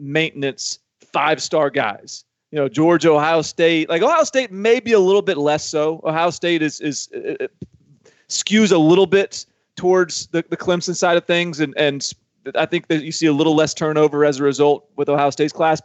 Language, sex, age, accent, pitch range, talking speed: English, male, 30-49, American, 140-170 Hz, 195 wpm